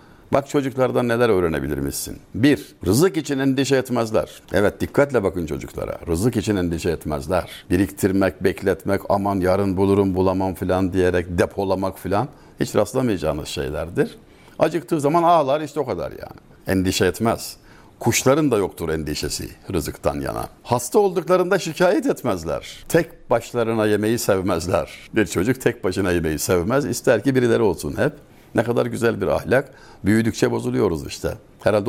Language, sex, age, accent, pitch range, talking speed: Turkish, male, 60-79, native, 95-150 Hz, 135 wpm